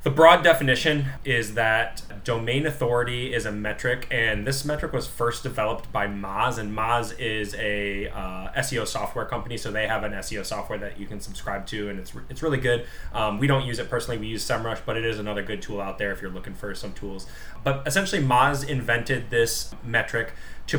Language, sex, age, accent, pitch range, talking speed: English, male, 10-29, American, 105-130 Hz, 210 wpm